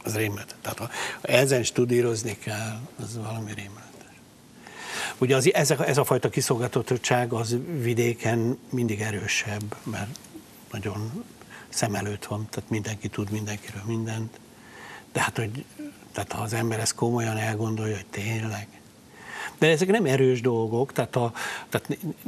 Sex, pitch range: male, 105-125 Hz